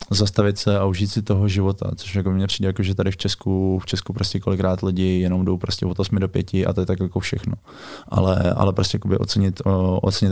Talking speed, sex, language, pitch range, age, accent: 225 wpm, male, Czech, 90-100 Hz, 20-39, native